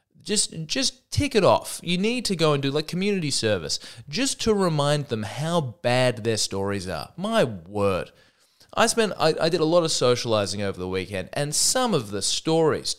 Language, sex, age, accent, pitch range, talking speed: English, male, 20-39, Australian, 105-165 Hz, 195 wpm